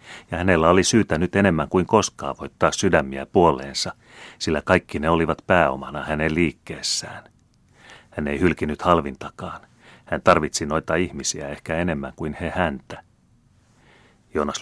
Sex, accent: male, native